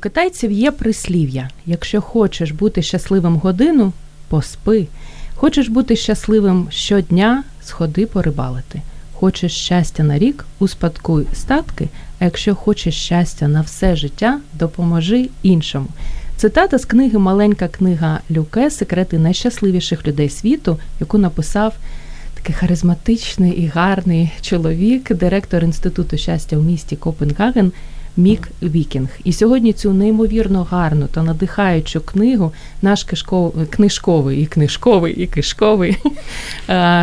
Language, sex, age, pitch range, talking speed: Ukrainian, female, 30-49, 165-210 Hz, 120 wpm